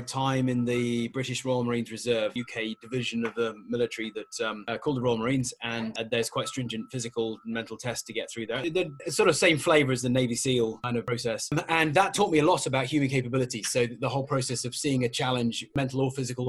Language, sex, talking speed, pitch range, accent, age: English, male, 230 wpm, 120-145 Hz, British, 20-39